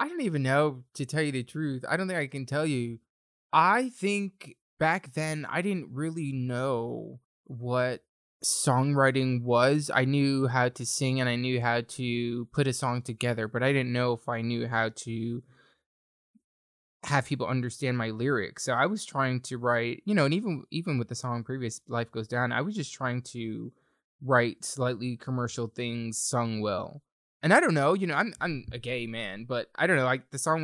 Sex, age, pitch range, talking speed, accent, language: male, 20-39, 115-140 Hz, 200 wpm, American, English